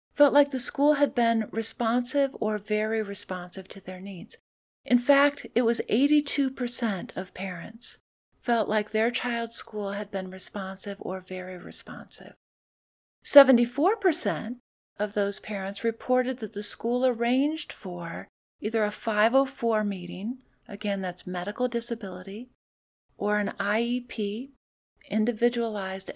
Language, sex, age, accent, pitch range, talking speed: English, female, 40-59, American, 195-250 Hz, 120 wpm